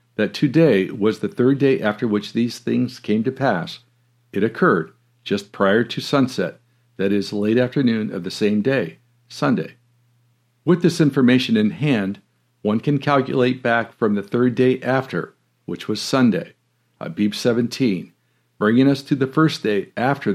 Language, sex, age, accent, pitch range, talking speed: English, male, 60-79, American, 110-135 Hz, 160 wpm